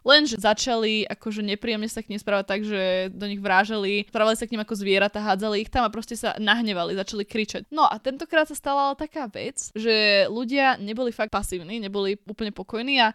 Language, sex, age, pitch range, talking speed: Slovak, female, 20-39, 200-235 Hz, 200 wpm